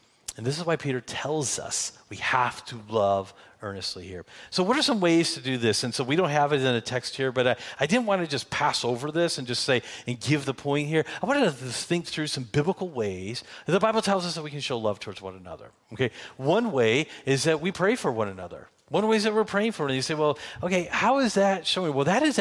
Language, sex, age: English, male, 40-59